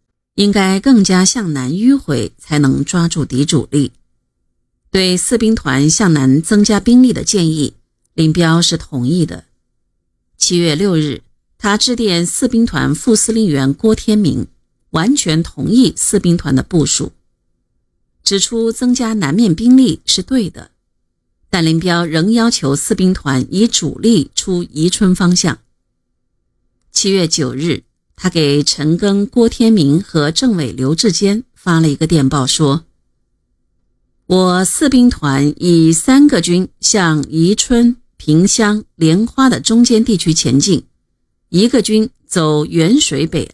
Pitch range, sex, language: 155-220 Hz, female, Chinese